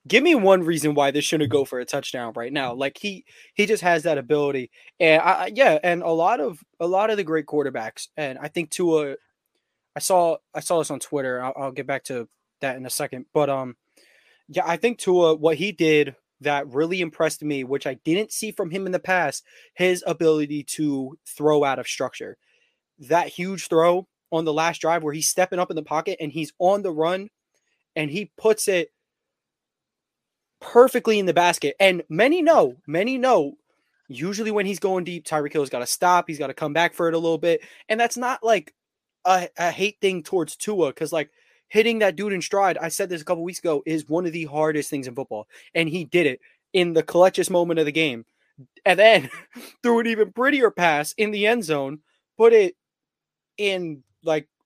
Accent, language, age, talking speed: American, English, 20-39, 210 wpm